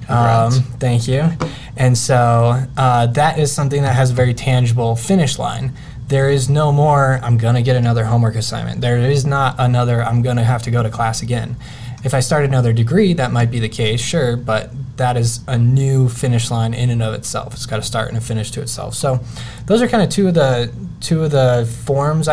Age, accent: 10-29, American